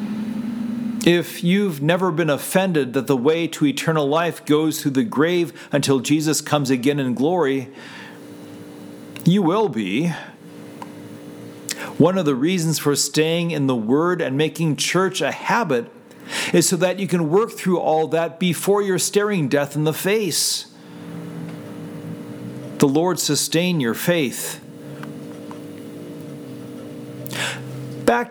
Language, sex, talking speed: English, male, 125 wpm